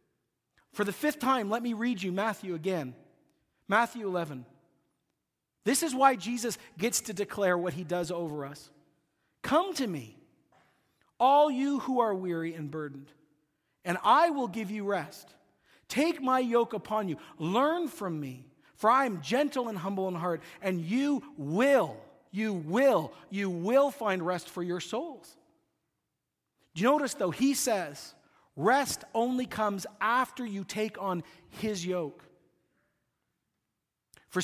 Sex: male